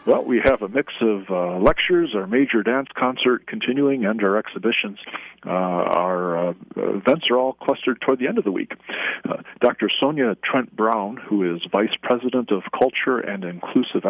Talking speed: 175 wpm